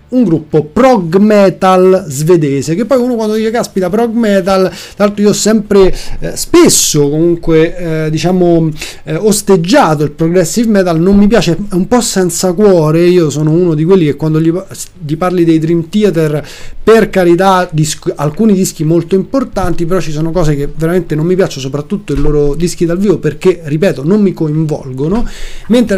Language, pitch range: Italian, 155-205 Hz